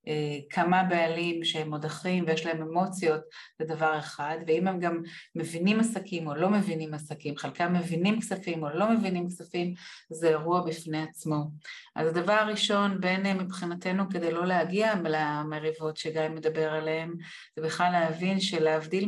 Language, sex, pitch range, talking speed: Hebrew, female, 155-195 Hz, 145 wpm